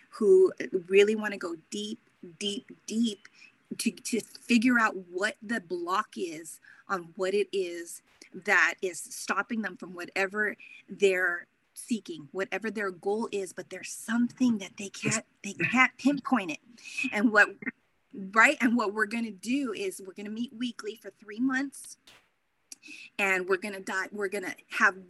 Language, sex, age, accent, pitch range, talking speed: English, female, 30-49, American, 190-235 Hz, 155 wpm